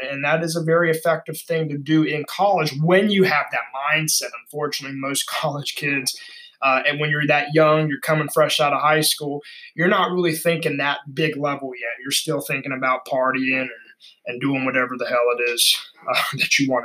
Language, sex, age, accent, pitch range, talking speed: English, male, 20-39, American, 130-160 Hz, 205 wpm